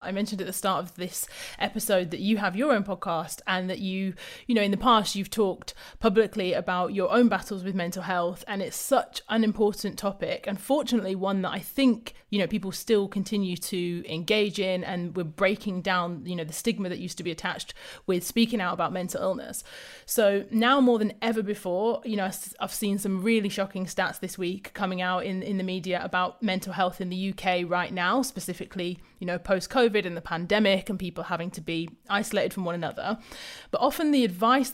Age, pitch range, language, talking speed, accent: 30-49, 185-220 Hz, English, 205 wpm, British